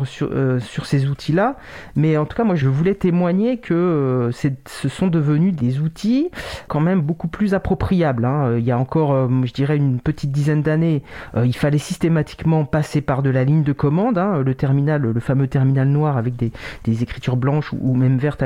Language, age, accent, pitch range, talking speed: French, 40-59, French, 130-160 Hz, 210 wpm